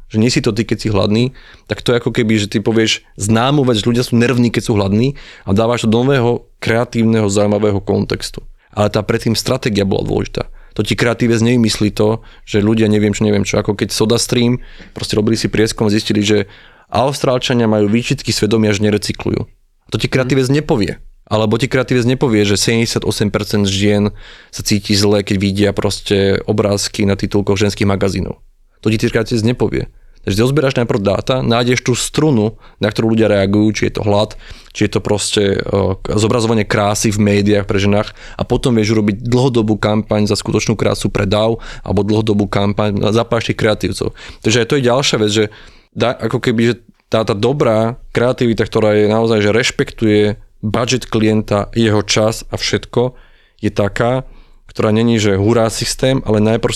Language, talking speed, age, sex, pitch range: Slovak, 175 wpm, 30-49, male, 105-120 Hz